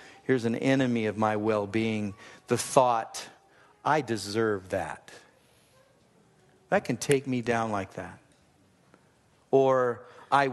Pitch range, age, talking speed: 110-135 Hz, 50-69, 115 wpm